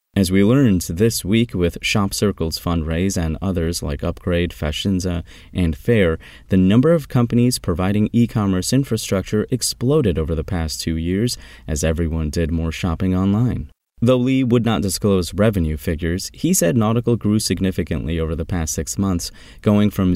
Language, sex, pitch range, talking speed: English, male, 85-110 Hz, 160 wpm